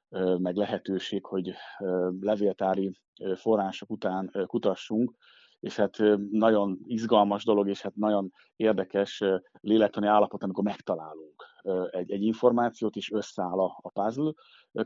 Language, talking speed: Hungarian, 110 wpm